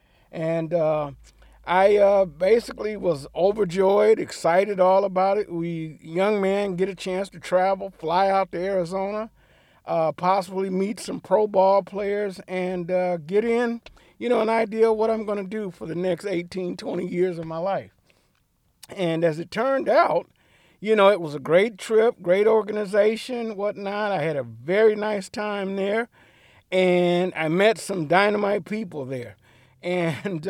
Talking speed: 165 wpm